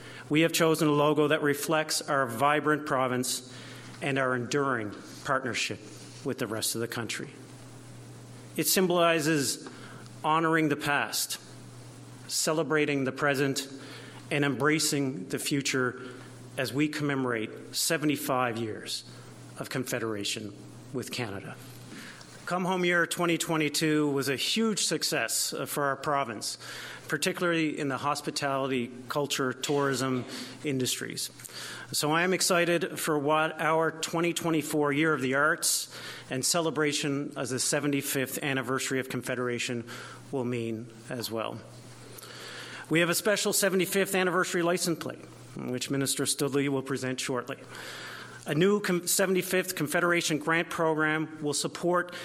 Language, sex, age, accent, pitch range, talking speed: English, male, 50-69, American, 130-160 Hz, 120 wpm